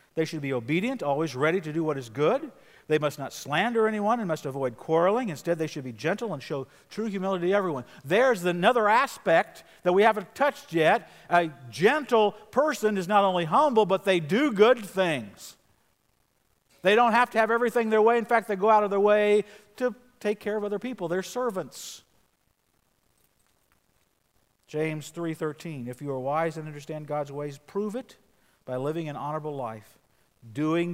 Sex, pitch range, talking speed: male, 145-210 Hz, 180 wpm